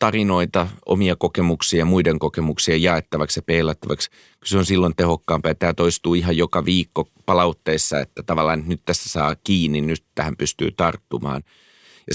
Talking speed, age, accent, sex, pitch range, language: 155 wpm, 30-49, native, male, 80-95 Hz, Finnish